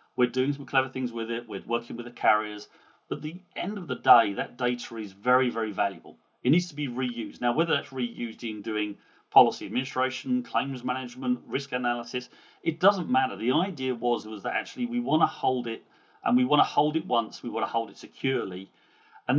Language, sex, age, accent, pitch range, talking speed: English, male, 40-59, British, 110-140 Hz, 215 wpm